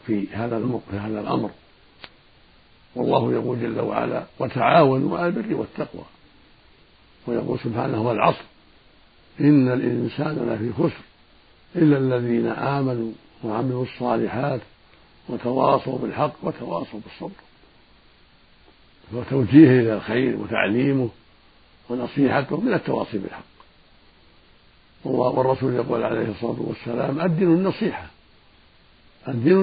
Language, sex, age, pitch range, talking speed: Arabic, male, 60-79, 115-145 Hz, 95 wpm